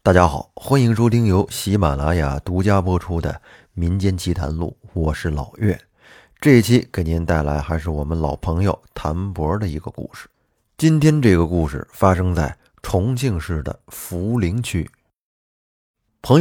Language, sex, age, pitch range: Chinese, male, 20-39, 80-120 Hz